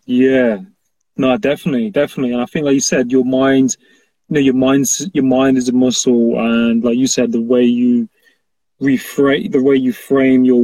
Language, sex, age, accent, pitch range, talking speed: English, male, 20-39, British, 125-140 Hz, 190 wpm